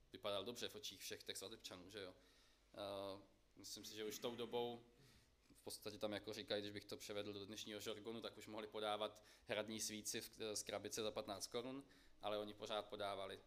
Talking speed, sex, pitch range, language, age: 185 wpm, male, 110-140 Hz, Czech, 20-39